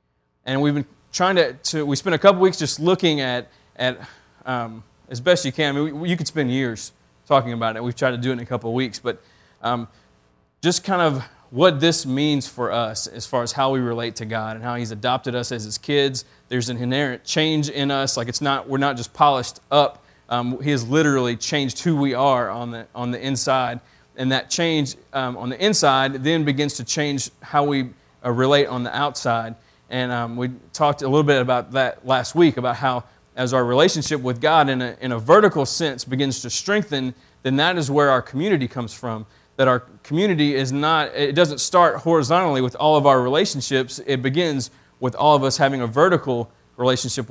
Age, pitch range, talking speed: 30-49, 120-145 Hz, 215 wpm